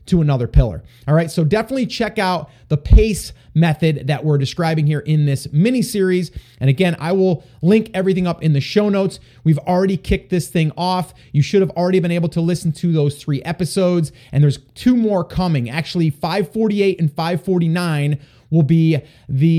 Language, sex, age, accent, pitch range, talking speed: English, male, 30-49, American, 140-190 Hz, 185 wpm